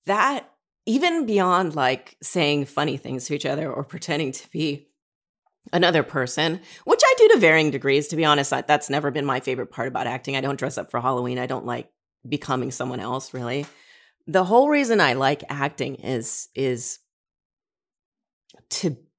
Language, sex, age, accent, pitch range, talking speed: English, female, 30-49, American, 130-180 Hz, 170 wpm